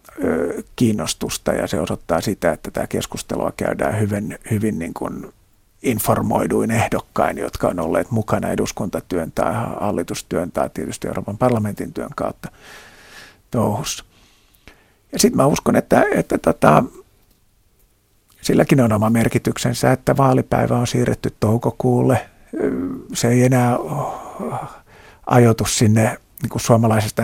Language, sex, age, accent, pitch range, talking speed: Finnish, male, 50-69, native, 105-120 Hz, 120 wpm